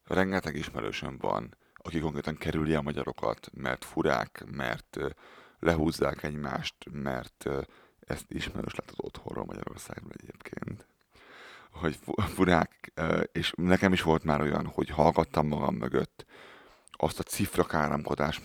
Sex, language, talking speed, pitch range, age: male, Hungarian, 120 wpm, 75-85 Hz, 30-49